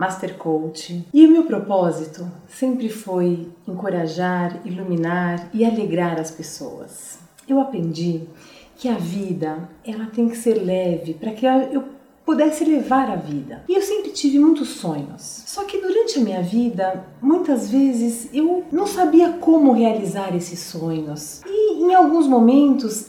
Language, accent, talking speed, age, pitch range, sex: Portuguese, Brazilian, 145 wpm, 40-59, 180-275 Hz, female